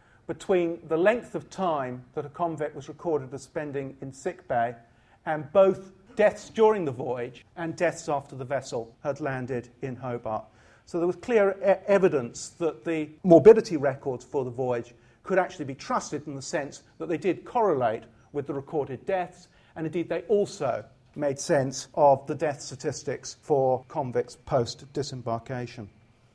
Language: English